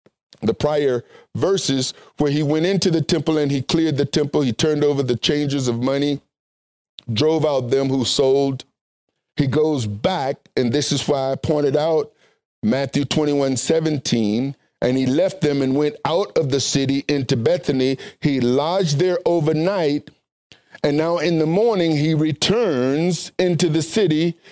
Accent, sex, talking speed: American, male, 160 wpm